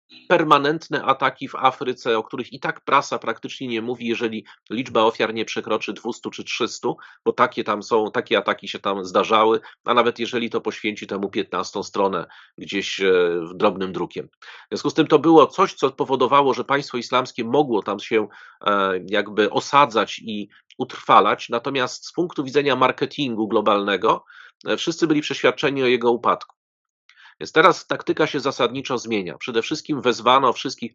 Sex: male